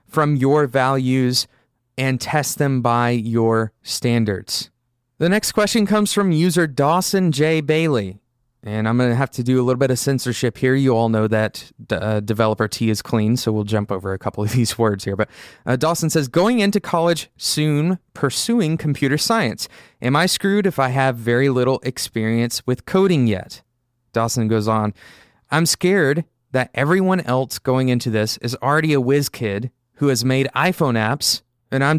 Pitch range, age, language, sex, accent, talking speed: 115-155 Hz, 20-39, English, male, American, 180 wpm